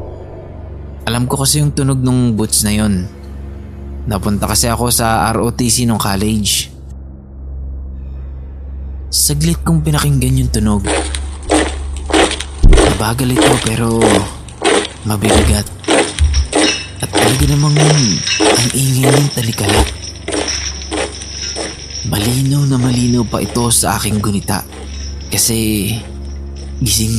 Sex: male